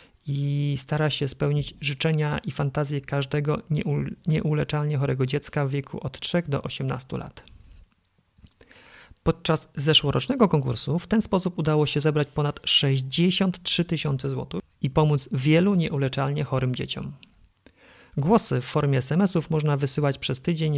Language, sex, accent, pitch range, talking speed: Polish, male, native, 135-155 Hz, 130 wpm